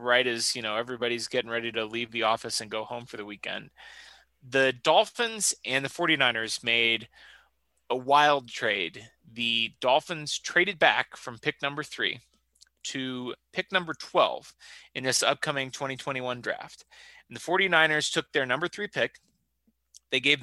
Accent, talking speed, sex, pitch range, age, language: American, 155 wpm, male, 120-160 Hz, 30-49, English